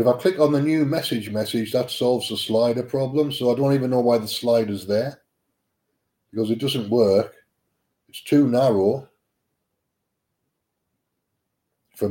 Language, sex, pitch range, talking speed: English, male, 110-135 Hz, 155 wpm